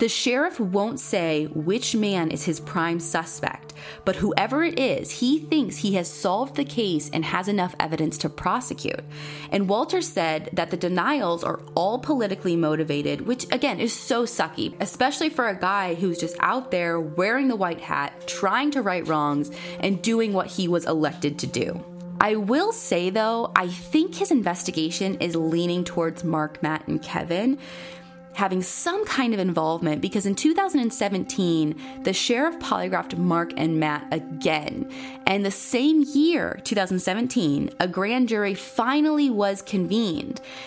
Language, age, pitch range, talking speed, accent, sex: English, 20-39, 160-235 Hz, 160 wpm, American, female